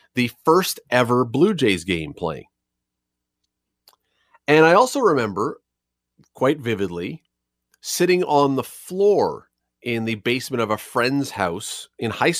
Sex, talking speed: male, 125 wpm